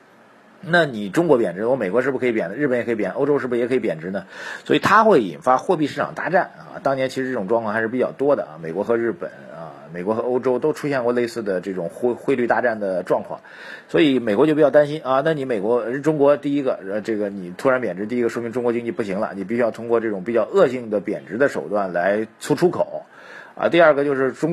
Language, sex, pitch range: Chinese, male, 105-145 Hz